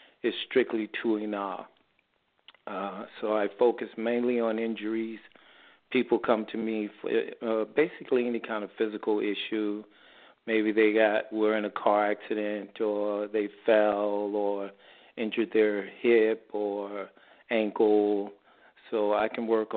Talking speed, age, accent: 130 wpm, 40-59, American